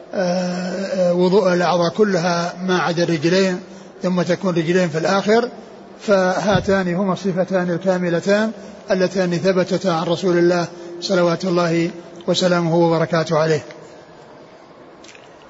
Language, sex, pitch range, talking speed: Arabic, male, 175-195 Hz, 95 wpm